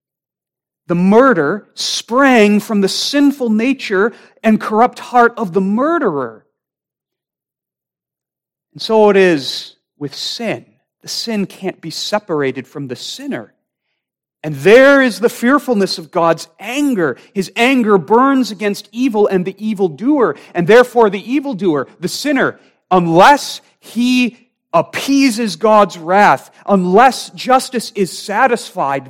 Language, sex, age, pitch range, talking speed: English, male, 40-59, 170-235 Hz, 120 wpm